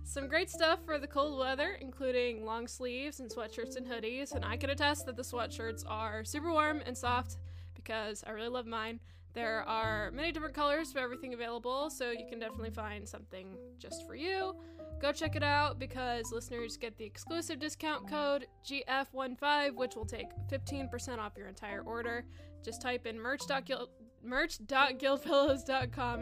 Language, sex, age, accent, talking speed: English, female, 10-29, American, 170 wpm